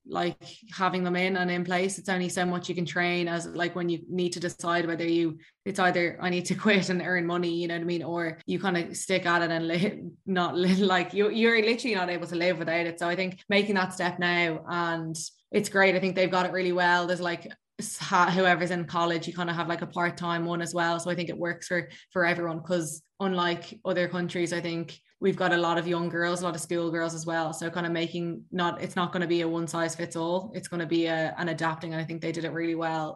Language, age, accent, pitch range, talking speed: English, 20-39, Irish, 170-180 Hz, 255 wpm